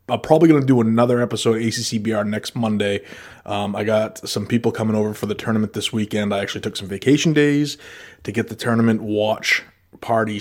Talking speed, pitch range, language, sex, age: 210 wpm, 105-115 Hz, English, male, 20-39